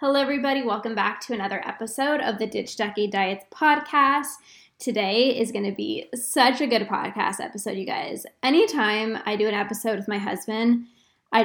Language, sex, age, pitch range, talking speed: English, female, 10-29, 210-255 Hz, 180 wpm